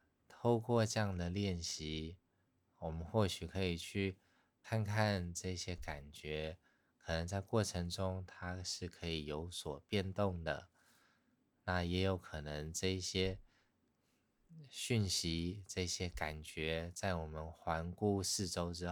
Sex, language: male, Chinese